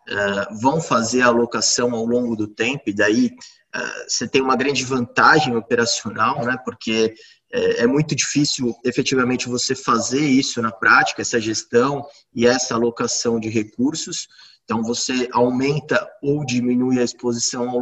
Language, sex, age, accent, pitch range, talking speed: Portuguese, male, 20-39, Brazilian, 120-140 Hz, 145 wpm